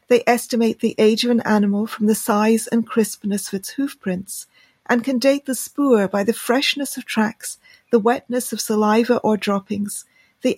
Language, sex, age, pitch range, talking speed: English, female, 40-59, 210-245 Hz, 180 wpm